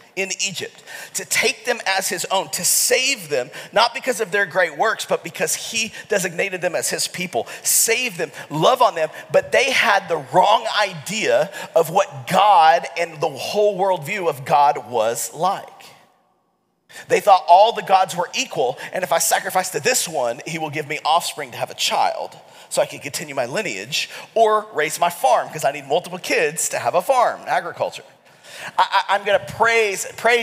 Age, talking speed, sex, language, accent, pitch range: 40-59, 185 wpm, male, English, American, 165-220 Hz